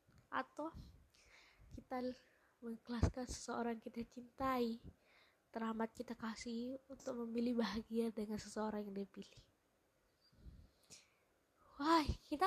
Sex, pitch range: female, 215-255 Hz